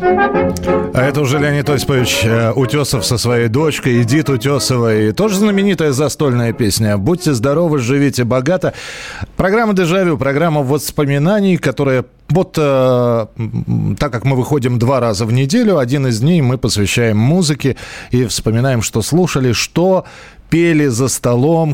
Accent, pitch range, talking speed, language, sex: native, 105-145 Hz, 135 wpm, Russian, male